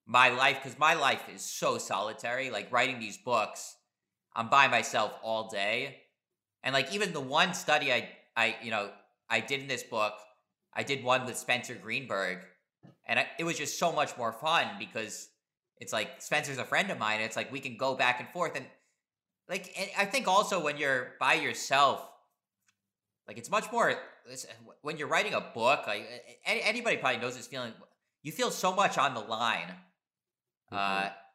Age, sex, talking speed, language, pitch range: 20-39, male, 180 wpm, English, 110-170 Hz